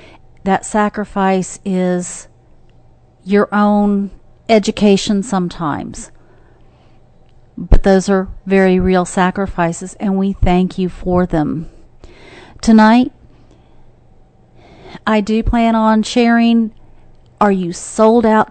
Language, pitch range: English, 175-230 Hz